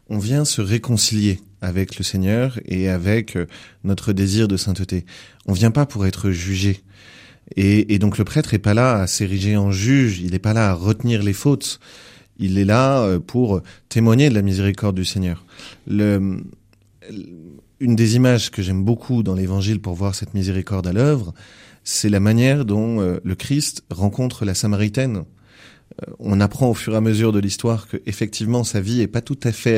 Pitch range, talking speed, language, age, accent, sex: 100-125 Hz, 185 wpm, French, 30-49, French, male